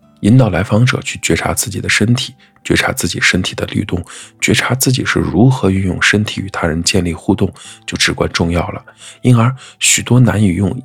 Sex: male